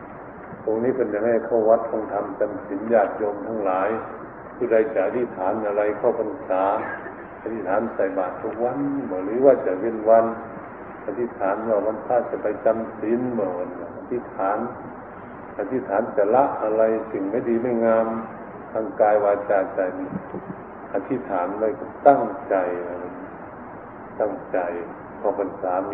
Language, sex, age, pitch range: Thai, male, 60-79, 105-135 Hz